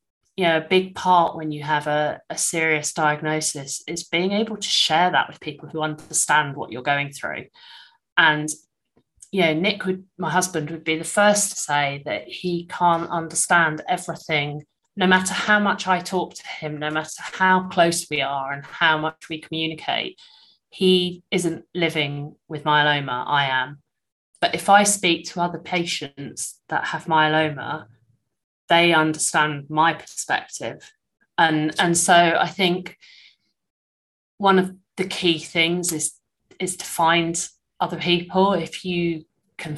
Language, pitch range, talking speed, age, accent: English, 155-185 Hz, 155 wpm, 30-49, British